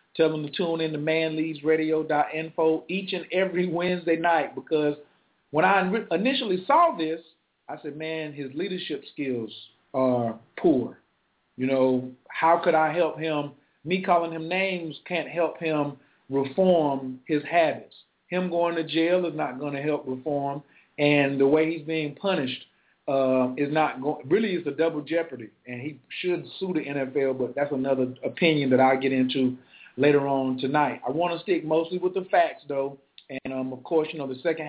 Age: 40-59